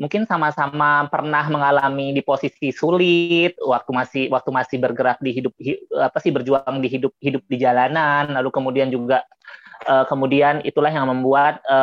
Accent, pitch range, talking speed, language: native, 125-150 Hz, 155 wpm, Indonesian